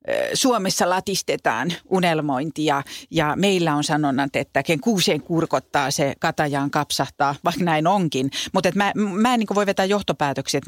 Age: 40-59